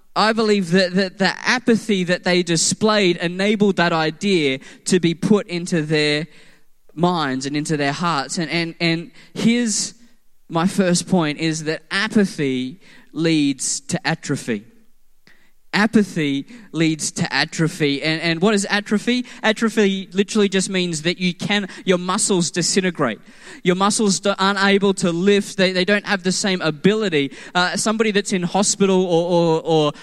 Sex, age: male, 10-29